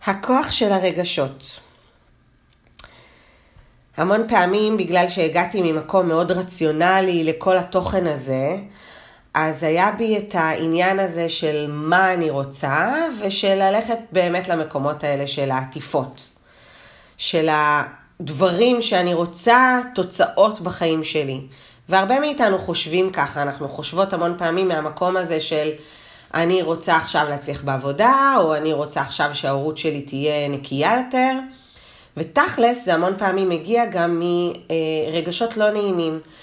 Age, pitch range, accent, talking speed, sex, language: 40-59, 150-190 Hz, native, 115 wpm, female, Hebrew